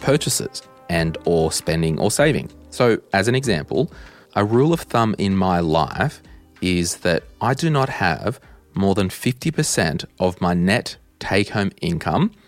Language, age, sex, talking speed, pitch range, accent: English, 30-49, male, 150 wpm, 90-115 Hz, Australian